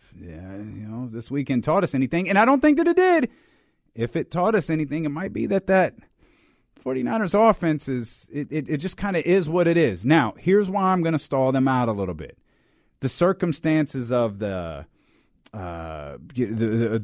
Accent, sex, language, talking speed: American, male, English, 200 wpm